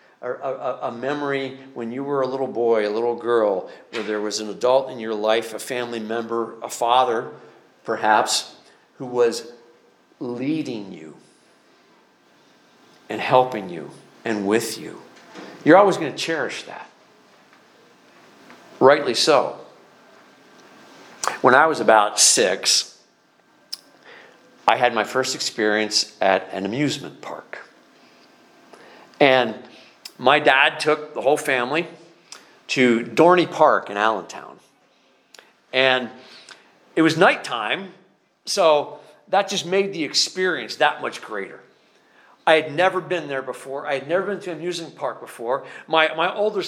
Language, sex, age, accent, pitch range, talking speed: English, male, 50-69, American, 125-180 Hz, 130 wpm